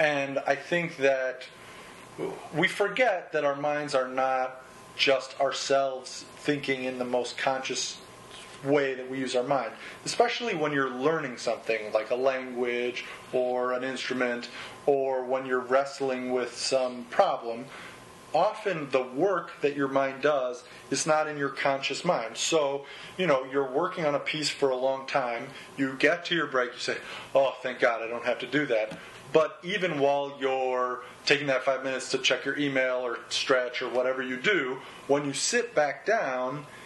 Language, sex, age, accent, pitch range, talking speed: English, male, 30-49, American, 130-145 Hz, 175 wpm